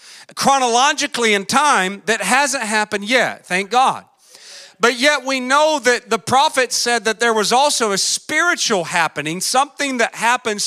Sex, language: male, English